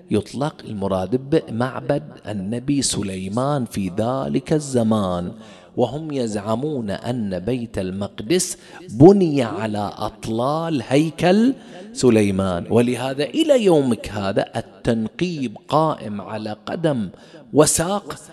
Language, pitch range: English, 110-175 Hz